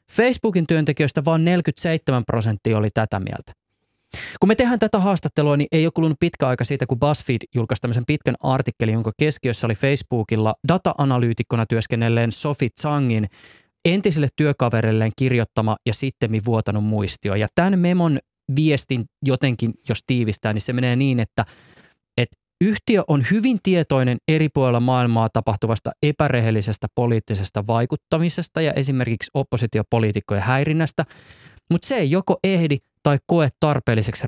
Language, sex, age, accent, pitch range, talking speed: Finnish, male, 20-39, native, 115-155 Hz, 135 wpm